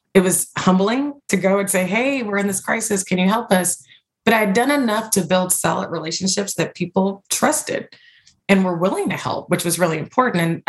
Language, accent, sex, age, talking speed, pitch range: English, American, female, 20-39, 215 wpm, 160-195 Hz